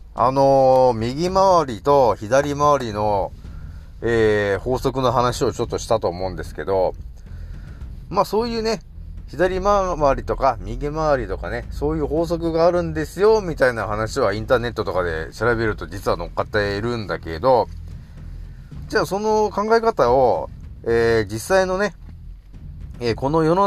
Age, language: 30-49, Japanese